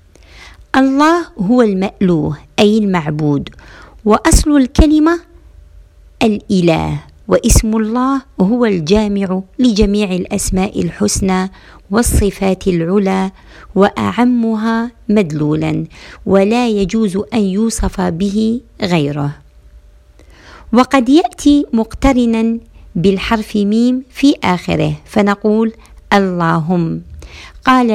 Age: 50-69